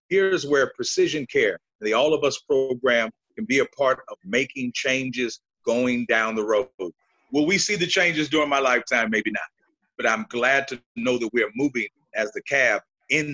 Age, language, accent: 40-59, English, American